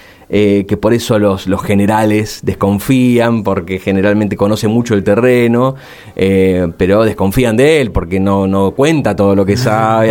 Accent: Argentinian